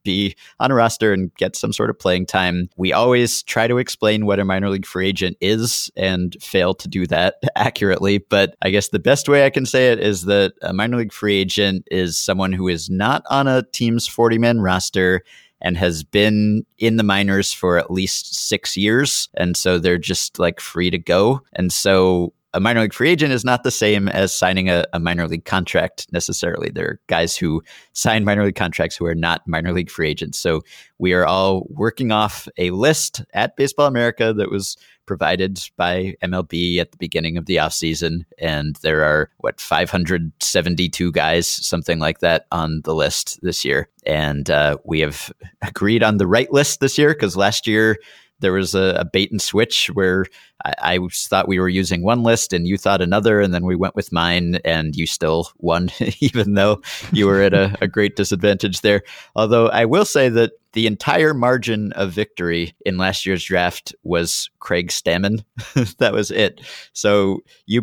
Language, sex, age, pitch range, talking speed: English, male, 30-49, 90-110 Hz, 195 wpm